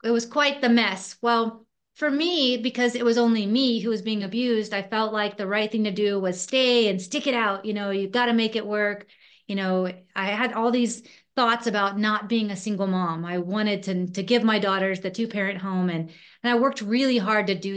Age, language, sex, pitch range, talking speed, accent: 30-49, English, female, 195-245 Hz, 235 wpm, American